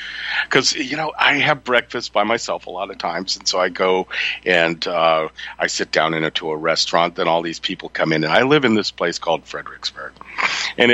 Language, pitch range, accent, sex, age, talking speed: English, 90-120 Hz, American, male, 50-69, 220 wpm